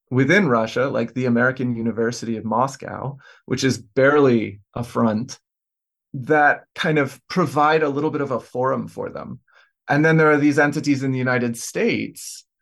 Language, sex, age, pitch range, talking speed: English, male, 30-49, 120-145 Hz, 165 wpm